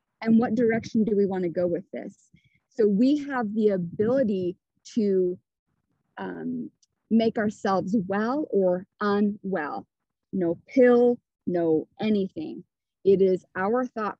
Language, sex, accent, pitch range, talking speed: English, female, American, 185-235 Hz, 125 wpm